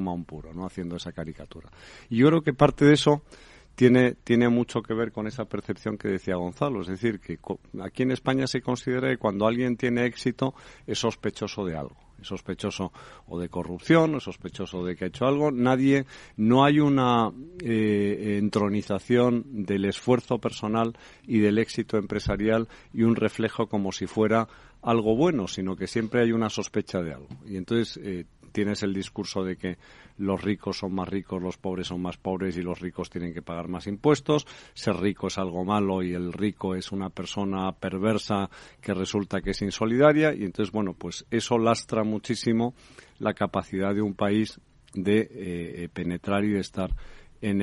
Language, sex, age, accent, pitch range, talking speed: Spanish, male, 50-69, Spanish, 95-115 Hz, 180 wpm